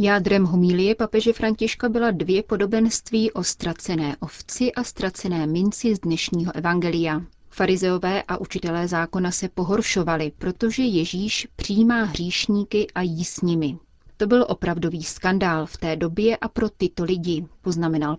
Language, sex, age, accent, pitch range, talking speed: Czech, female, 30-49, native, 170-215 Hz, 140 wpm